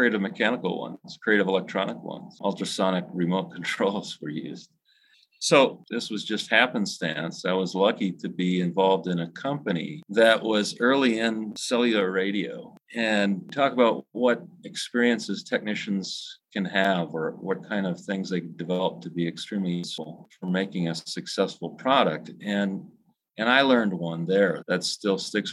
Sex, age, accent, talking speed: male, 40-59, American, 150 wpm